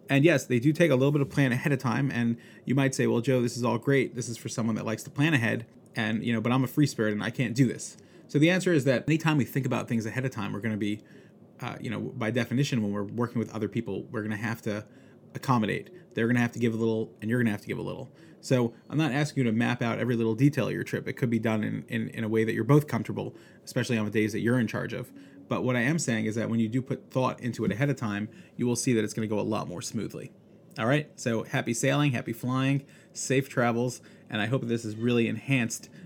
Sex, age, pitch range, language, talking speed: male, 30-49, 115-140 Hz, English, 295 wpm